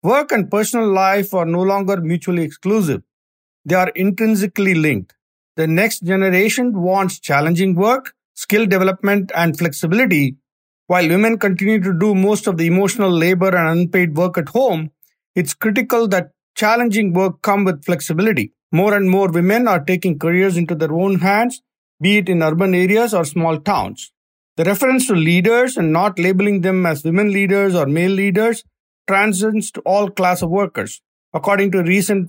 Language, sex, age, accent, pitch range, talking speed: English, male, 50-69, Indian, 170-205 Hz, 165 wpm